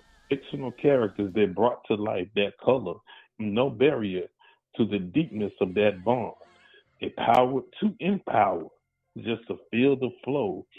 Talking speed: 140 wpm